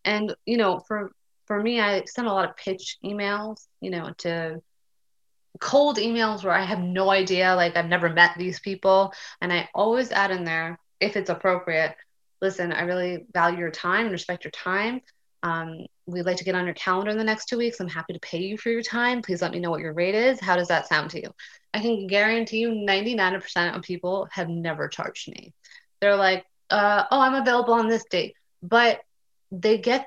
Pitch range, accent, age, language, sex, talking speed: 175-210 Hz, American, 20-39, English, female, 210 wpm